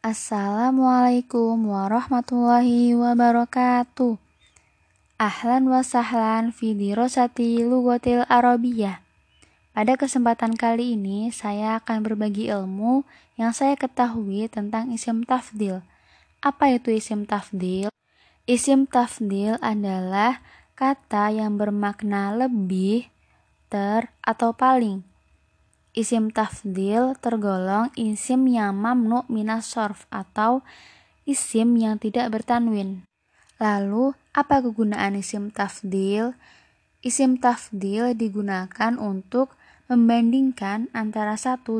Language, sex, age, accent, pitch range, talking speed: Indonesian, female, 10-29, native, 205-245 Hz, 90 wpm